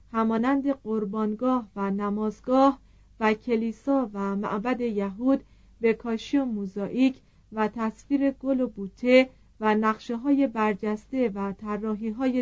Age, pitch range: 40-59, 200-255 Hz